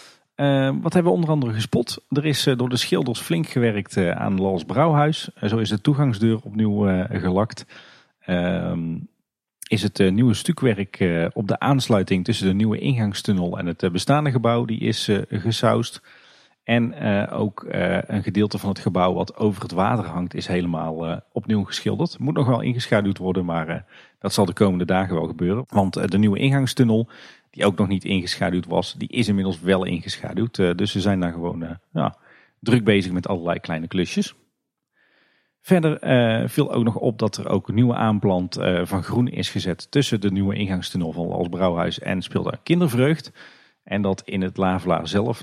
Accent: Dutch